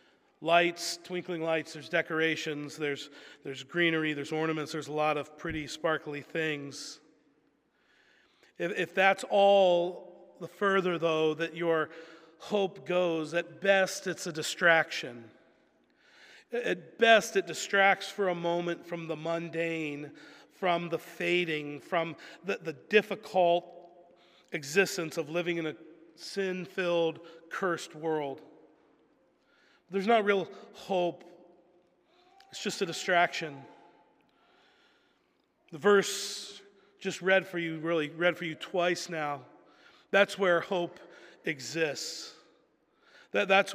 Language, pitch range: English, 165-195 Hz